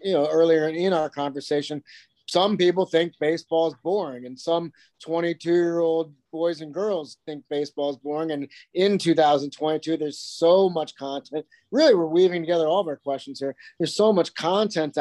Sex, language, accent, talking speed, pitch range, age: male, English, American, 175 wpm, 150-175 Hz, 30-49